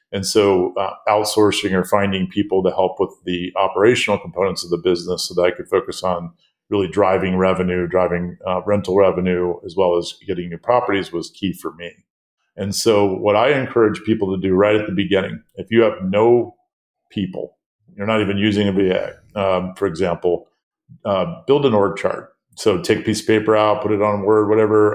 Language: English